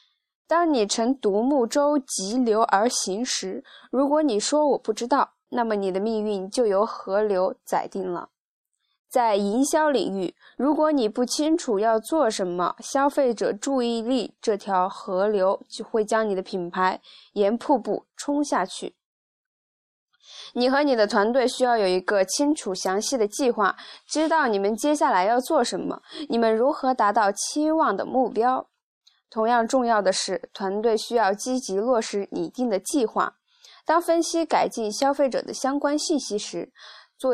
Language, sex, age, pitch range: Chinese, female, 20-39, 200-275 Hz